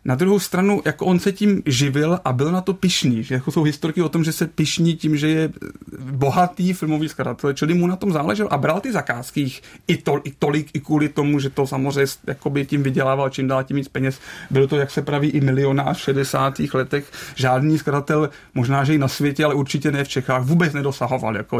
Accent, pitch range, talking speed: native, 135-155 Hz, 215 wpm